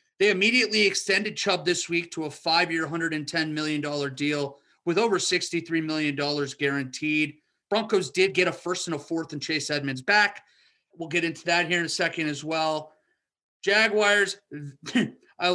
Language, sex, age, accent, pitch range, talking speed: English, male, 30-49, American, 155-195 Hz, 160 wpm